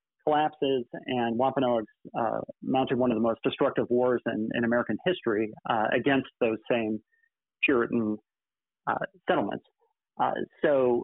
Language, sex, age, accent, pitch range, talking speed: English, male, 40-59, American, 110-135 Hz, 130 wpm